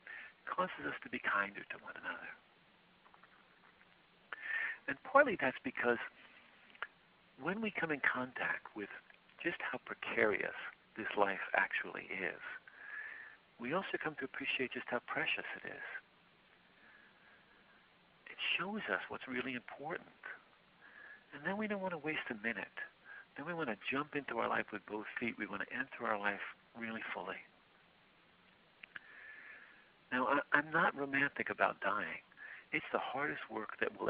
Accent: American